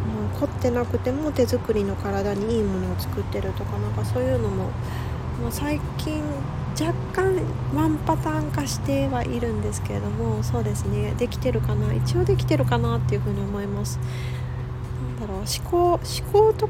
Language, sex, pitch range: Japanese, female, 100-125 Hz